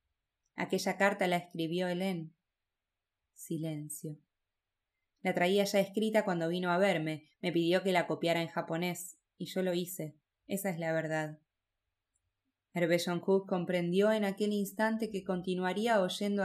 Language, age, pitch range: Spanish, 20-39, 160-200 Hz